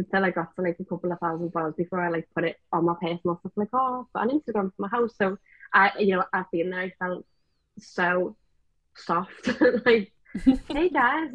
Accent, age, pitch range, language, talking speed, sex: British, 20-39, 190-230 Hz, English, 215 wpm, female